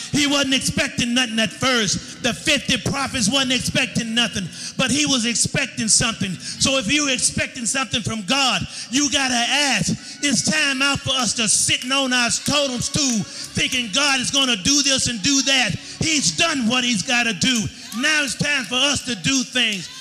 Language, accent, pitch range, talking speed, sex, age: English, American, 235-280 Hz, 195 wpm, male, 30-49